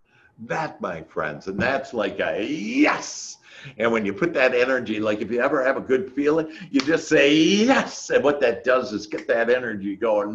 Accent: American